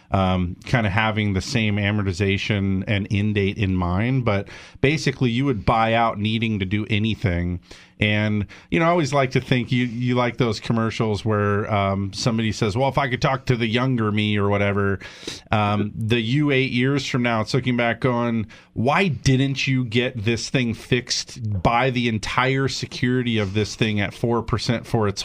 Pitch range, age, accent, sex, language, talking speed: 105-125 Hz, 40-59, American, male, English, 185 wpm